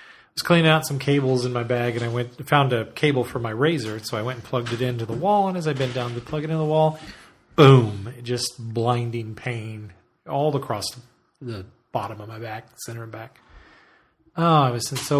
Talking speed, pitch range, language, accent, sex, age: 225 wpm, 125-155 Hz, English, American, male, 40-59